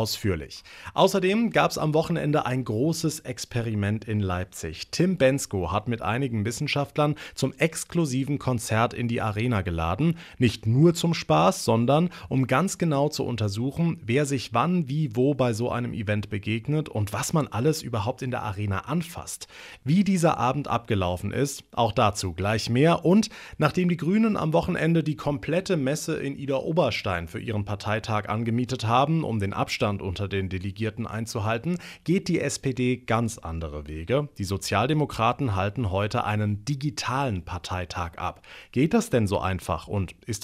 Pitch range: 105-150 Hz